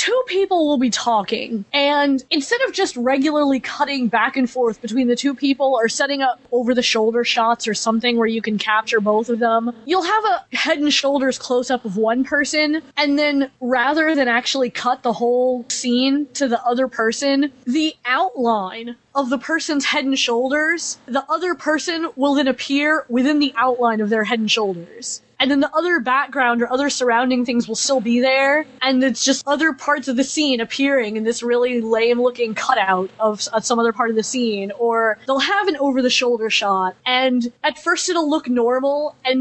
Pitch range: 235-285 Hz